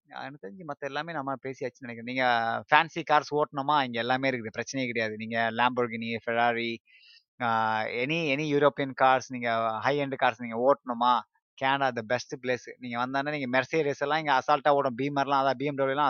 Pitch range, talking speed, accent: 130-155 Hz, 165 wpm, native